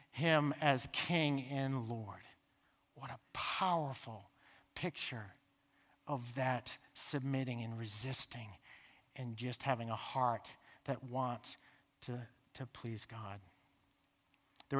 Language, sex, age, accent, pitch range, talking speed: English, male, 50-69, American, 130-160 Hz, 105 wpm